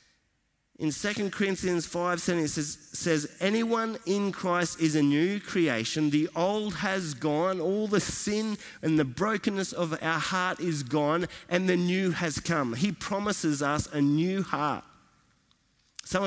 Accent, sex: Australian, male